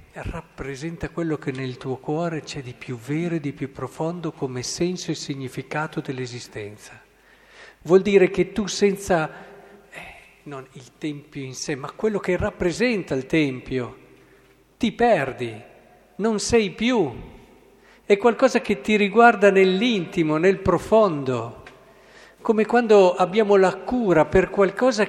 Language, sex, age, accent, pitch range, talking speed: Italian, male, 50-69, native, 150-205 Hz, 135 wpm